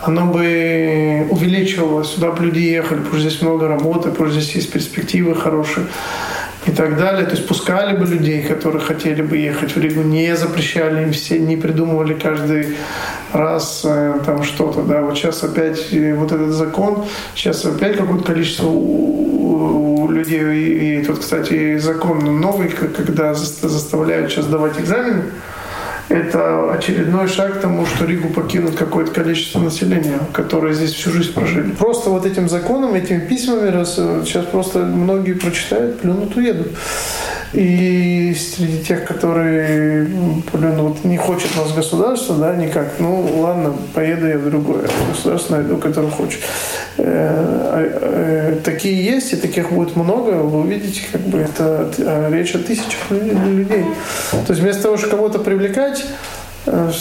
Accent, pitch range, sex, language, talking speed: native, 155-185 Hz, male, Russian, 145 wpm